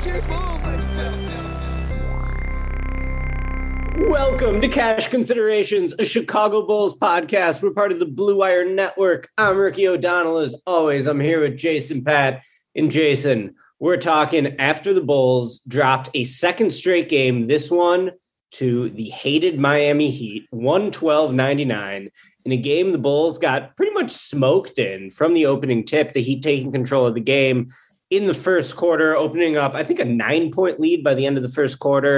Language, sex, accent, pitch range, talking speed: English, male, American, 125-175 Hz, 155 wpm